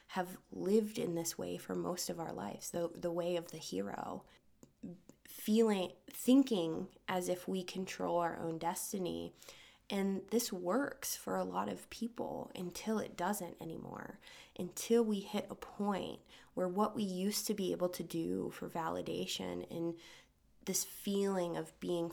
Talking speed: 155 wpm